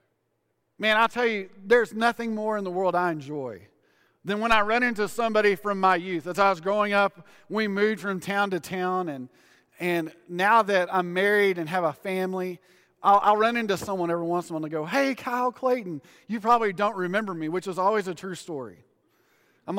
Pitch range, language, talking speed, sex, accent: 175-225 Hz, English, 210 wpm, male, American